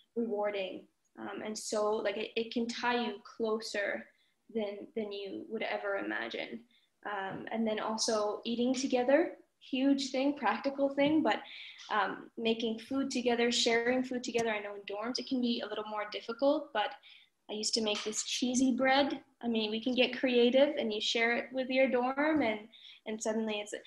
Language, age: English, 10-29